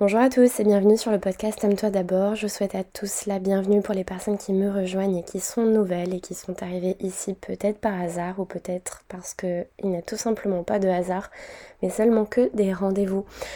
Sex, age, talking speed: female, 20-39, 225 wpm